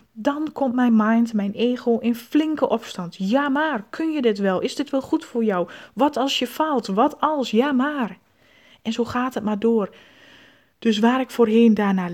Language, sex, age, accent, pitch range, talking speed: Dutch, female, 20-39, Dutch, 205-245 Hz, 200 wpm